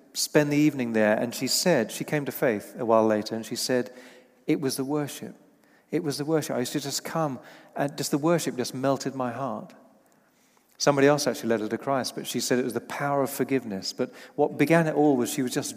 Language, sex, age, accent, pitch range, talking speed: English, male, 40-59, British, 115-140 Hz, 240 wpm